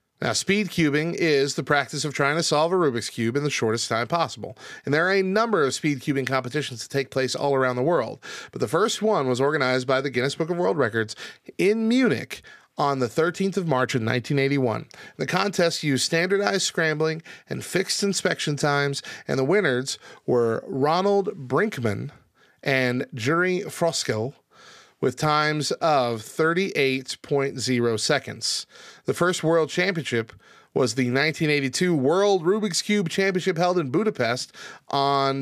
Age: 30-49